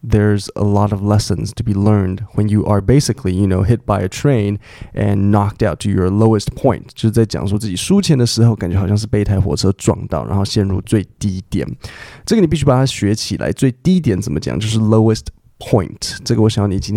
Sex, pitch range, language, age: male, 100-125 Hz, Chinese, 20-39